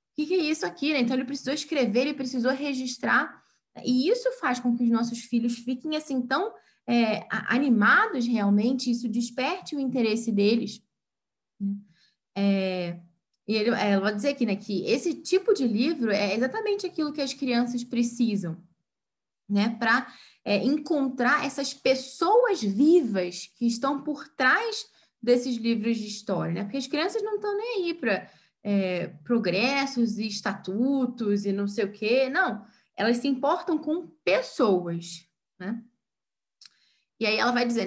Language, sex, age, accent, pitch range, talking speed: Portuguese, female, 10-29, Brazilian, 210-285 Hz, 145 wpm